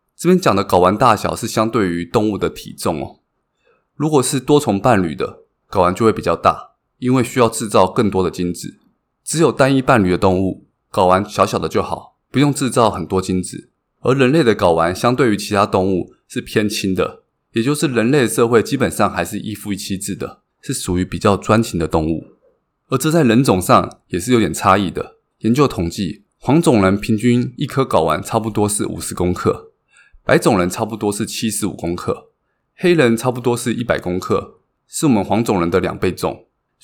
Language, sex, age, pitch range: Chinese, male, 20-39, 95-125 Hz